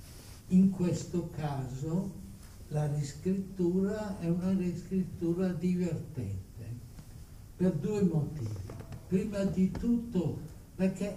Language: Italian